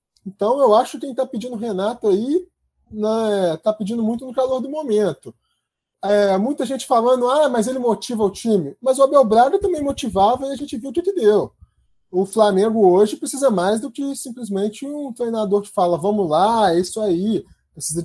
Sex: male